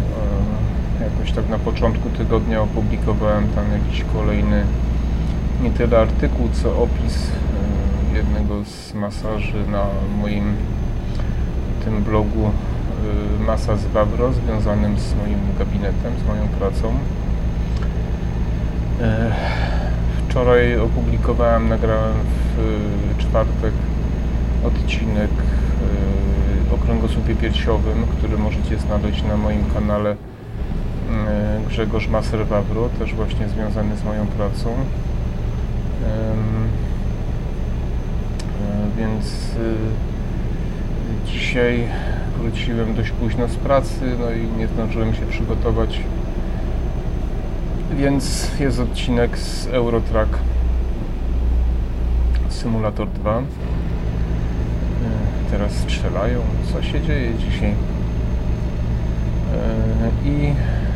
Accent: native